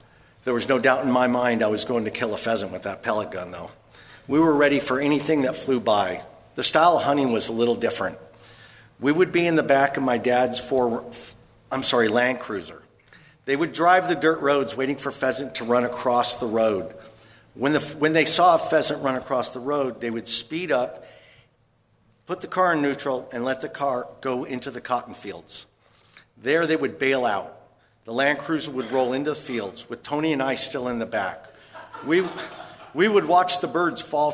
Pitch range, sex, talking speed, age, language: 120-145 Hz, male, 210 wpm, 50-69, English